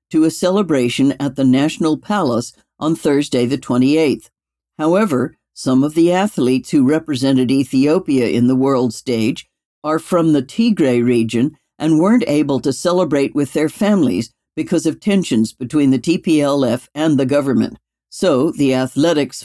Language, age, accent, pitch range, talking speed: English, 60-79, American, 130-175 Hz, 150 wpm